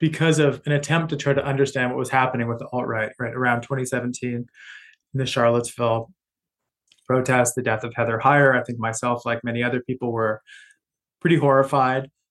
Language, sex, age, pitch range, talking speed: English, male, 20-39, 120-140 Hz, 175 wpm